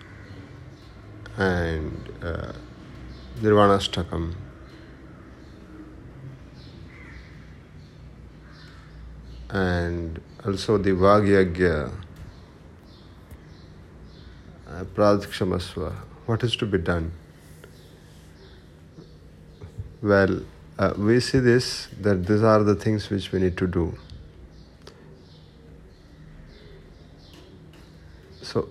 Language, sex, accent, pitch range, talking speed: Hindi, male, native, 80-105 Hz, 65 wpm